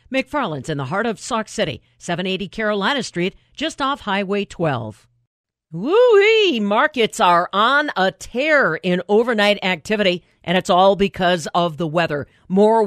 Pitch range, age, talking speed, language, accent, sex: 175-220 Hz, 50-69, 145 wpm, English, American, female